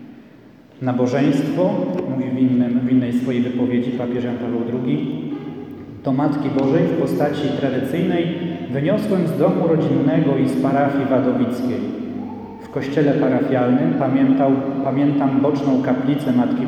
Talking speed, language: 120 wpm, Polish